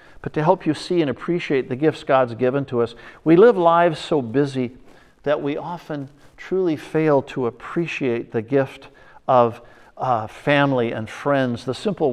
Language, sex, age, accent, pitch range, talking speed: English, male, 50-69, American, 115-140 Hz, 170 wpm